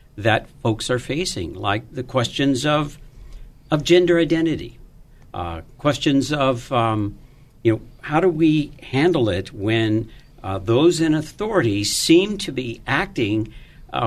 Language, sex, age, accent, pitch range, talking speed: English, male, 60-79, American, 120-160 Hz, 135 wpm